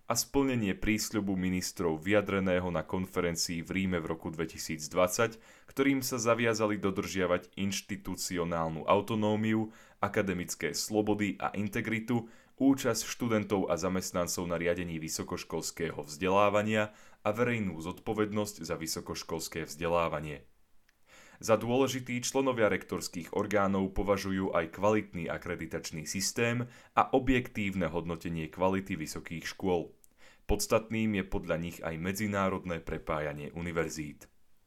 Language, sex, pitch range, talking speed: Slovak, male, 85-110 Hz, 105 wpm